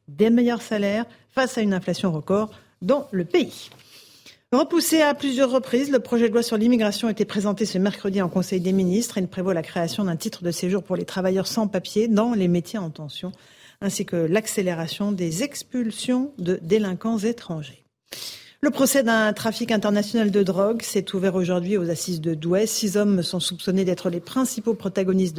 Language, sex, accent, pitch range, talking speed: French, female, French, 180-225 Hz, 185 wpm